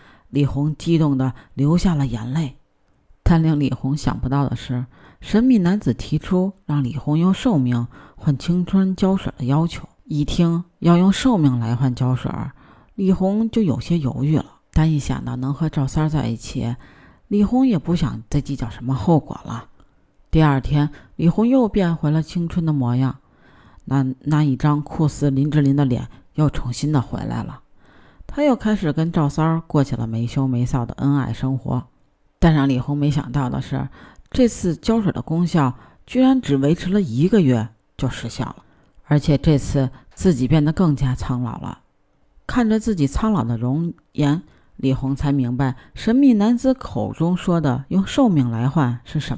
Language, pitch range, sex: Chinese, 130-175 Hz, female